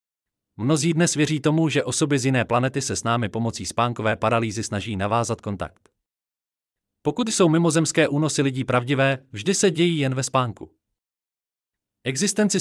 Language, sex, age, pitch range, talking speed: Czech, male, 30-49, 105-150 Hz, 150 wpm